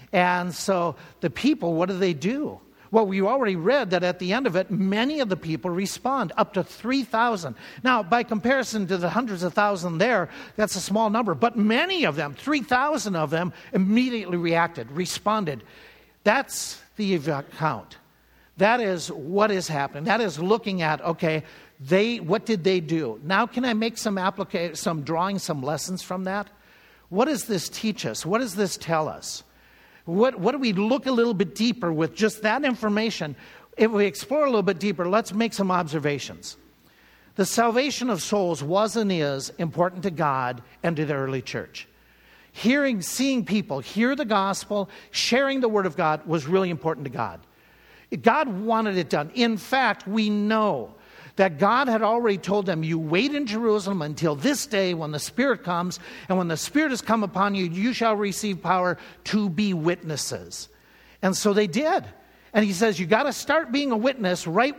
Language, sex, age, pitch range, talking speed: English, male, 60-79, 170-225 Hz, 185 wpm